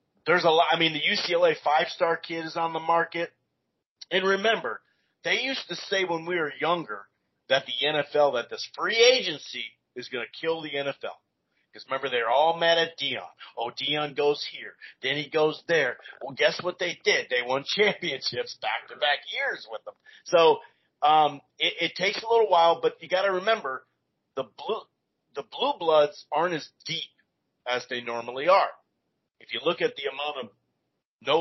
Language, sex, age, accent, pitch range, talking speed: English, male, 40-59, American, 145-210 Hz, 185 wpm